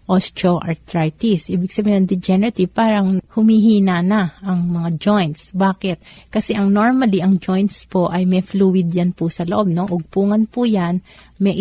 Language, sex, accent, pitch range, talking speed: Filipino, female, native, 175-200 Hz, 155 wpm